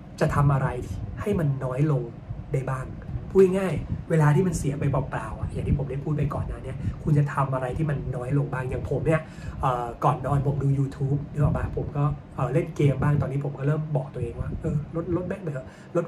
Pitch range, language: 130-160 Hz, Thai